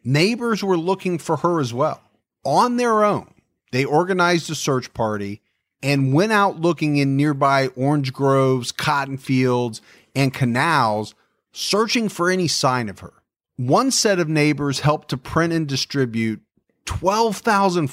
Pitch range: 125-180 Hz